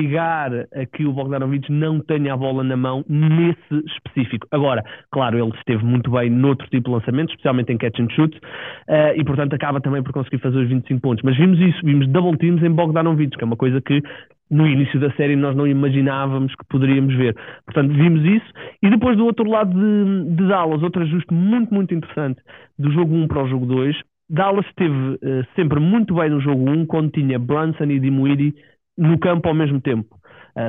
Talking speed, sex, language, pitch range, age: 205 wpm, male, Portuguese, 135-175 Hz, 20-39